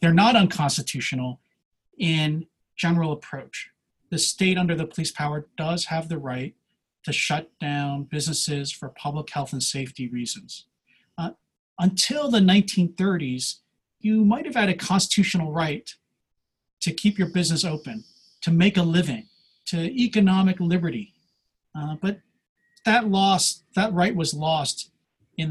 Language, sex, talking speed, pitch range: English, male, 135 wpm, 145-185 Hz